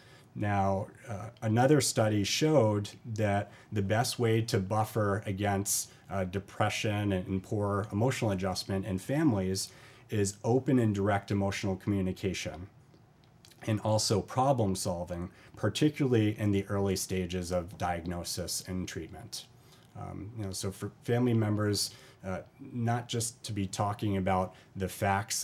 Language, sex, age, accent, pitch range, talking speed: English, male, 30-49, American, 95-115 Hz, 130 wpm